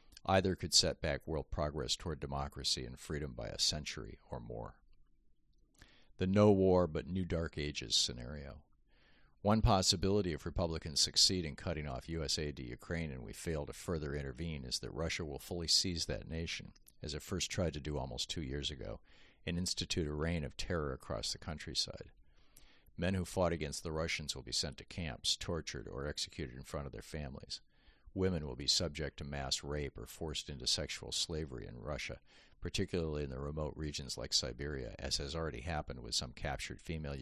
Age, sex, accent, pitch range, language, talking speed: 50-69, male, American, 70-85 Hz, English, 175 wpm